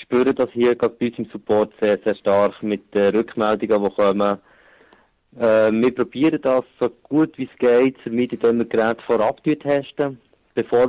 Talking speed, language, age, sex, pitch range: 195 wpm, German, 30-49, male, 110-125 Hz